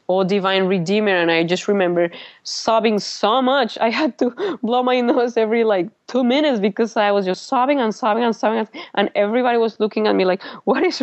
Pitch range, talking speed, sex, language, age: 175-220 Hz, 205 wpm, female, English, 20-39